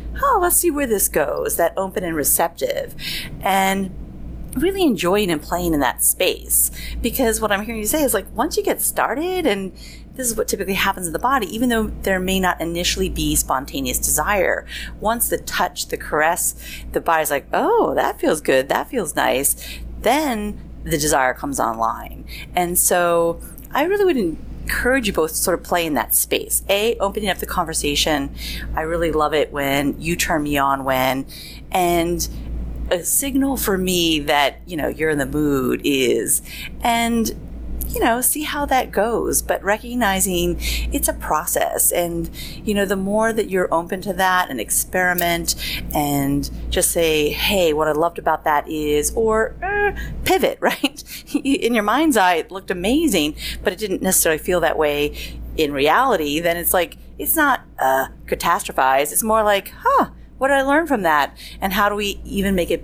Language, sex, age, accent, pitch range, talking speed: English, female, 30-49, American, 155-230 Hz, 180 wpm